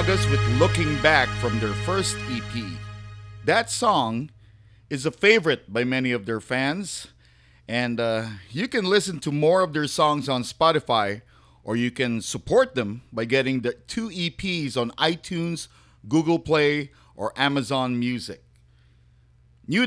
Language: English